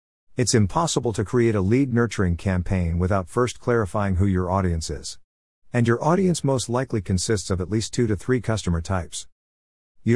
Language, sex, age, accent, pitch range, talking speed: English, male, 50-69, American, 85-115 Hz, 175 wpm